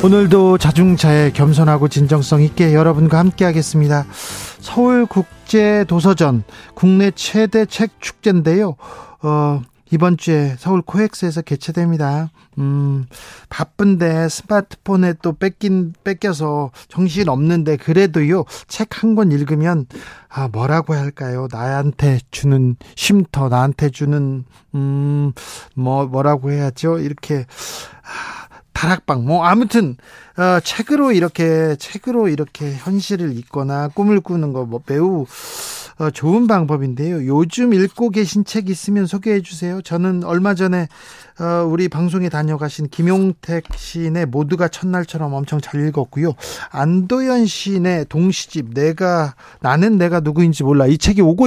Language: Korean